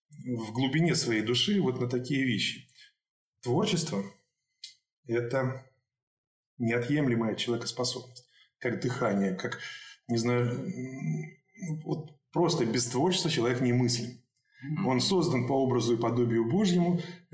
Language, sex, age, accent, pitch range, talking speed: Russian, male, 20-39, native, 120-170 Hz, 105 wpm